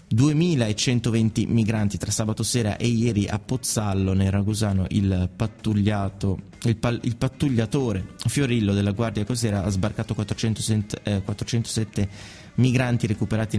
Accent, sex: native, male